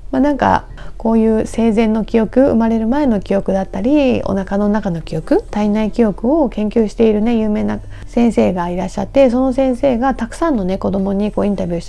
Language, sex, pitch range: Japanese, female, 190-255 Hz